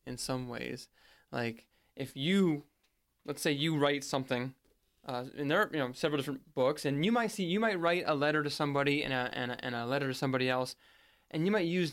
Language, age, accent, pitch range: English, 20-39, American, 125-150 Hz